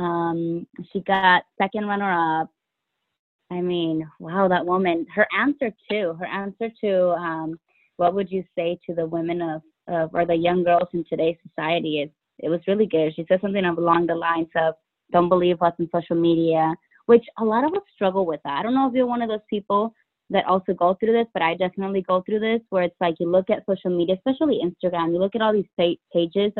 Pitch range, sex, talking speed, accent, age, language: 170-205 Hz, female, 215 wpm, American, 20-39, English